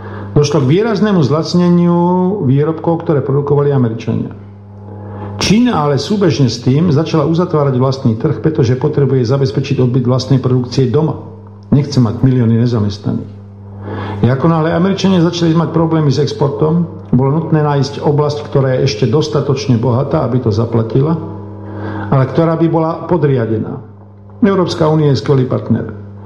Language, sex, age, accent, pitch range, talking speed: English, male, 50-69, Czech, 115-155 Hz, 130 wpm